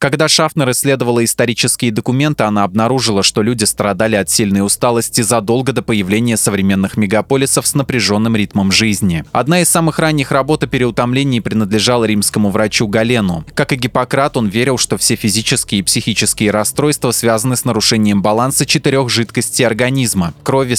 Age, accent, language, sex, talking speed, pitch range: 20-39, native, Russian, male, 150 wpm, 110-130 Hz